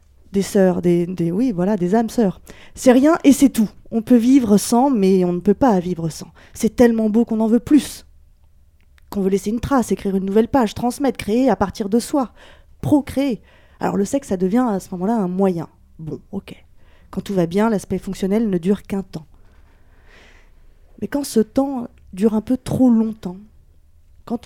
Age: 20-39